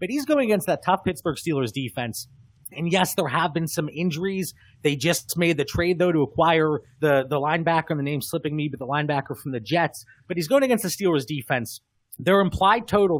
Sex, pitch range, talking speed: male, 135-175 Hz, 220 wpm